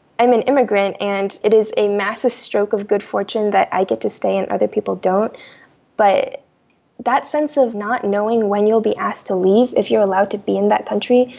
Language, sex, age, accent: English, female, 10-29, American